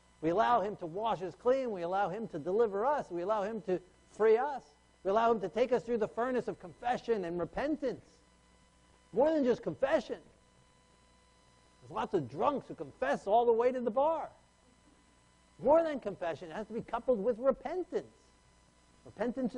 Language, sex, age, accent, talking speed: English, male, 60-79, American, 180 wpm